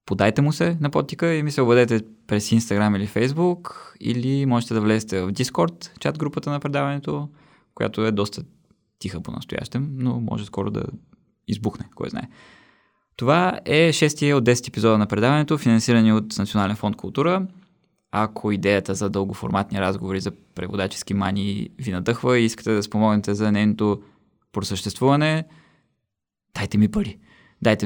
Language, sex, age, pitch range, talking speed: Bulgarian, male, 20-39, 100-135 Hz, 155 wpm